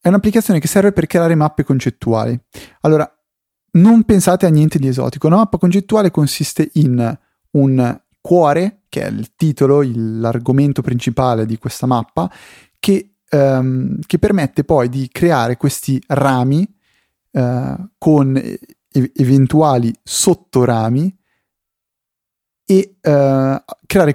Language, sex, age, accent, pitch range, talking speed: Italian, male, 30-49, native, 125-165 Hz, 110 wpm